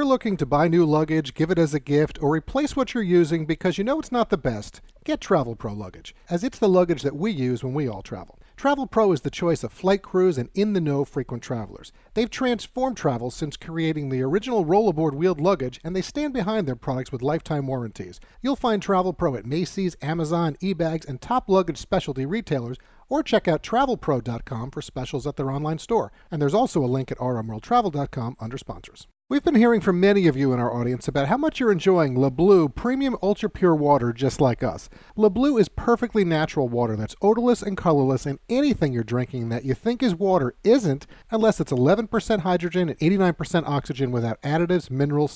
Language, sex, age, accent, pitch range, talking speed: English, male, 40-59, American, 130-210 Hz, 205 wpm